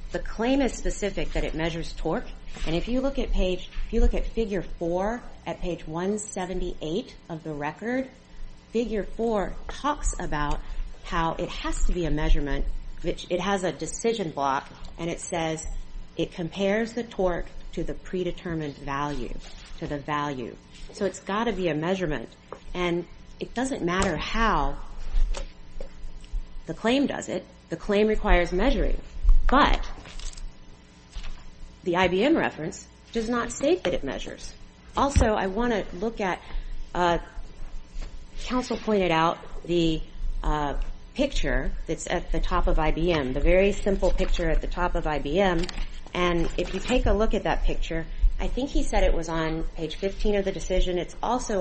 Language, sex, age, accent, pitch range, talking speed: English, female, 40-59, American, 155-205 Hz, 160 wpm